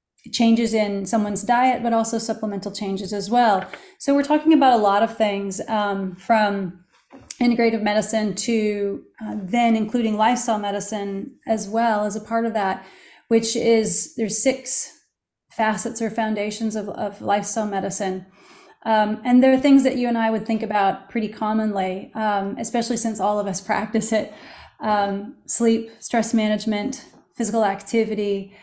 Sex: female